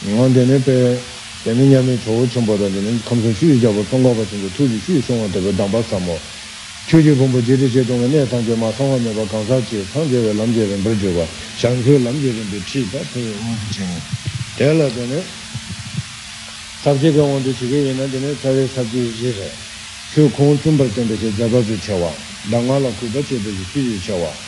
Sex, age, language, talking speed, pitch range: male, 60-79, Italian, 115 wpm, 110-135 Hz